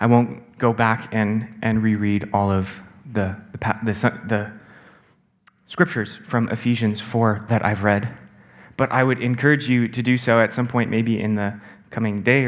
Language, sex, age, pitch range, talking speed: English, male, 30-49, 110-125 Hz, 175 wpm